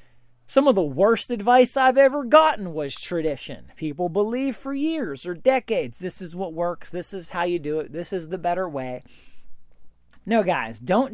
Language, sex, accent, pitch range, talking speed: English, male, American, 160-235 Hz, 185 wpm